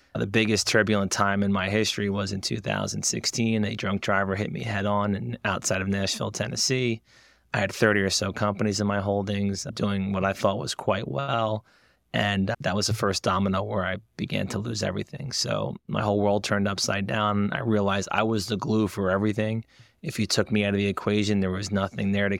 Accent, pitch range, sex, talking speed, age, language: American, 100-115 Hz, male, 205 wpm, 30-49, English